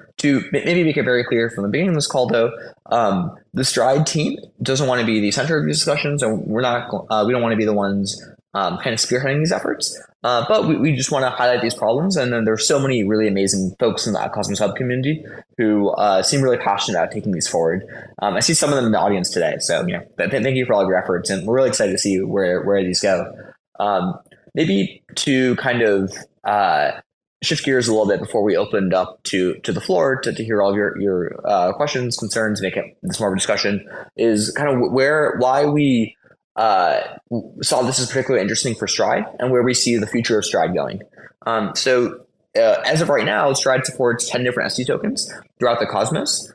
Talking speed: 230 wpm